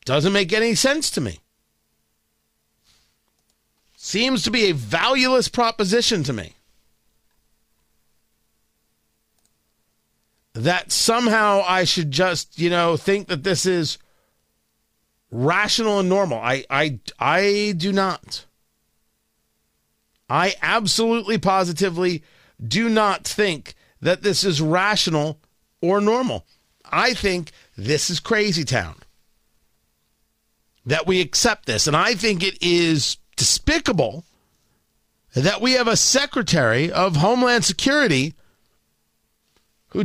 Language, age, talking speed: English, 50-69, 105 wpm